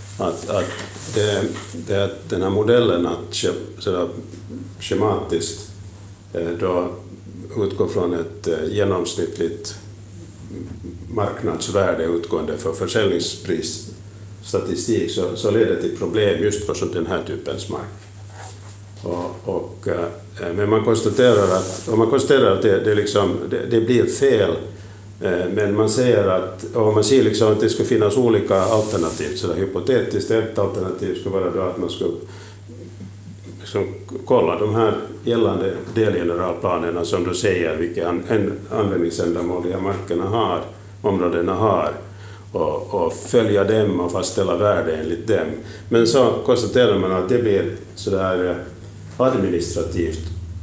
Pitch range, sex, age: 90-105 Hz, male, 50-69